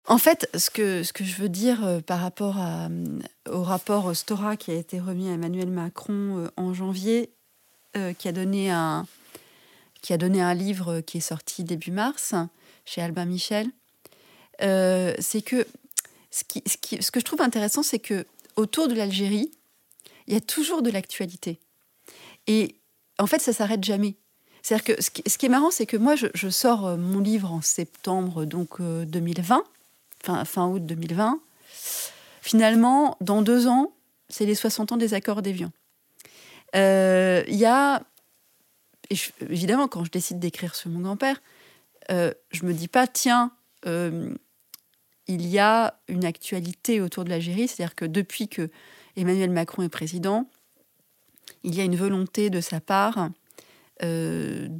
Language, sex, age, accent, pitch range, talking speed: French, female, 40-59, French, 175-220 Hz, 165 wpm